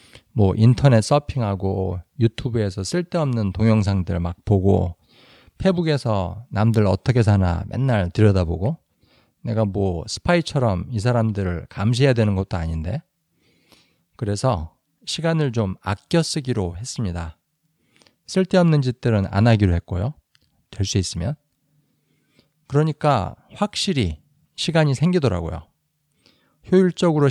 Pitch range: 100-145 Hz